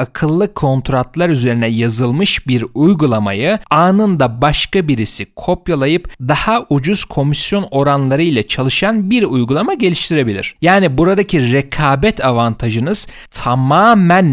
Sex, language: male, Turkish